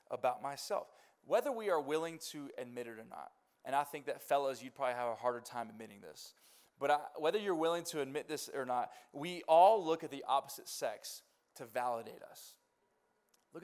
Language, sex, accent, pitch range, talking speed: English, male, American, 150-220 Hz, 195 wpm